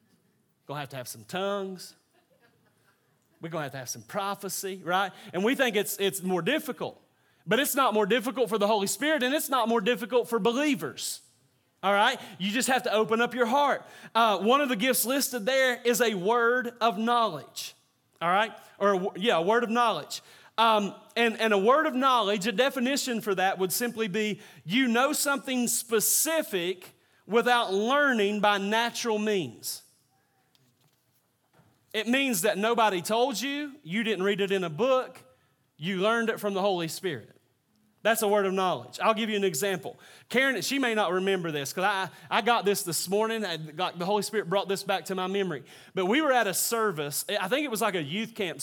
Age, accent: 30-49, American